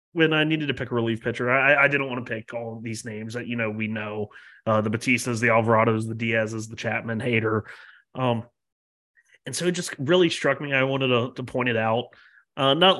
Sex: male